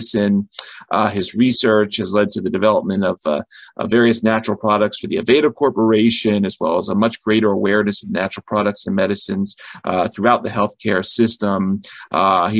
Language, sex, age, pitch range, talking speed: English, male, 40-59, 100-120 Hz, 170 wpm